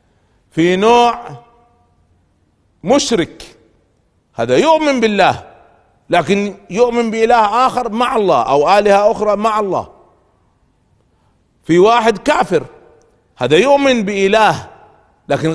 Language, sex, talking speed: Arabic, male, 95 wpm